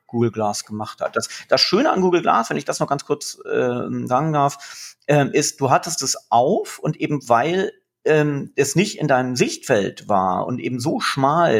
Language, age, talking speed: German, 40-59, 200 wpm